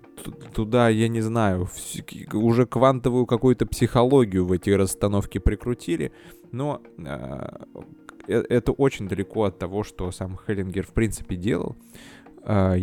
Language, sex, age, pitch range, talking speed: Russian, male, 20-39, 90-115 Hz, 120 wpm